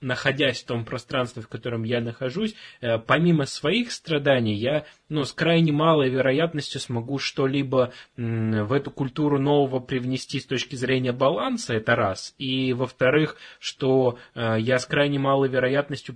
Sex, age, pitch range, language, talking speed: male, 20-39, 110-140 Hz, Russian, 140 wpm